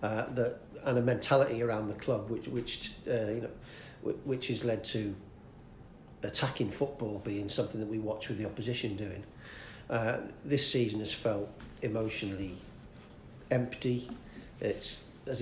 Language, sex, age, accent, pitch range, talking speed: English, male, 40-59, British, 105-125 Hz, 145 wpm